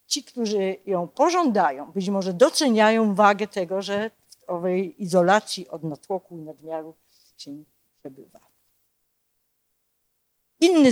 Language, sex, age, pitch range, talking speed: Polish, female, 50-69, 180-230 Hz, 110 wpm